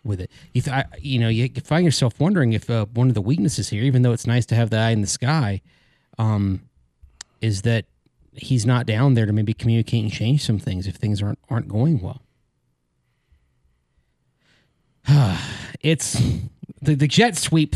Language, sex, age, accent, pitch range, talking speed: English, male, 30-49, American, 120-155 Hz, 175 wpm